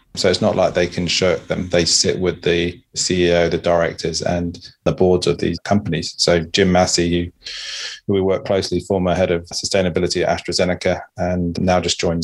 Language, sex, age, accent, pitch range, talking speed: English, male, 20-39, British, 85-90 Hz, 185 wpm